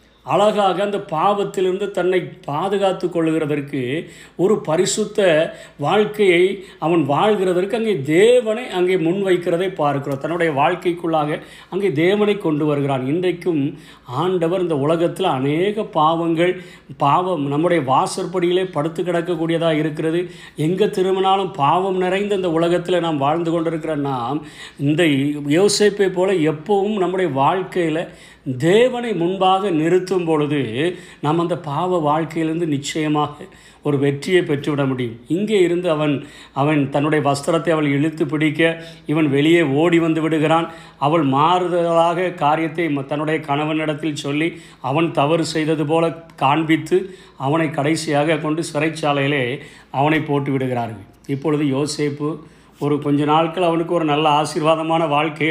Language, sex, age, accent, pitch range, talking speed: Tamil, male, 50-69, native, 150-180 Hz, 110 wpm